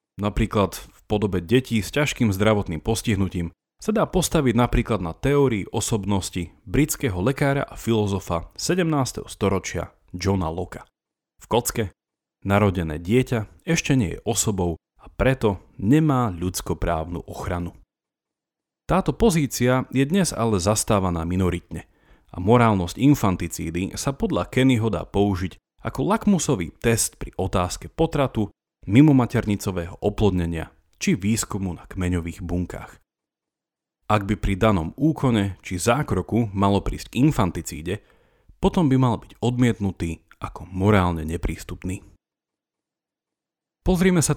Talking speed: 115 wpm